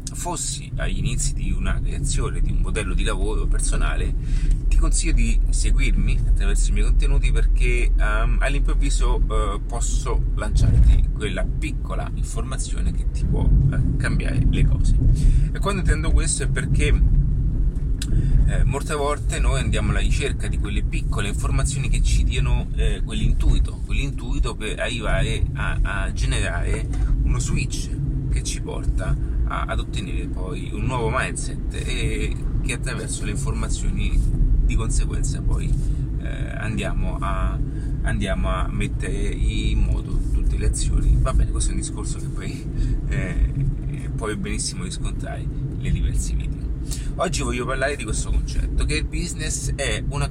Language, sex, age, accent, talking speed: Italian, male, 30-49, native, 145 wpm